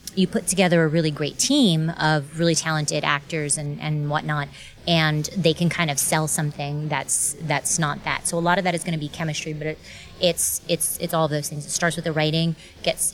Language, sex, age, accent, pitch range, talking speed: English, female, 30-49, American, 150-170 Hz, 220 wpm